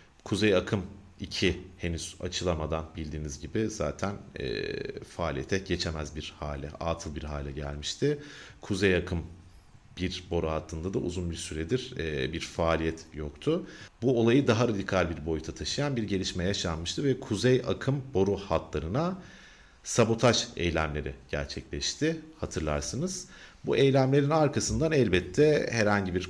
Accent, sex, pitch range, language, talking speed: native, male, 80-110 Hz, Turkish, 125 wpm